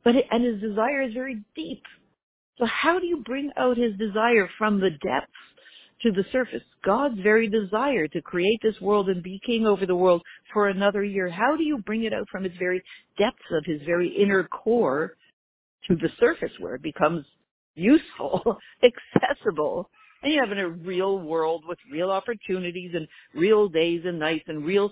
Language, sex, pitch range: English, female, 170-225 Hz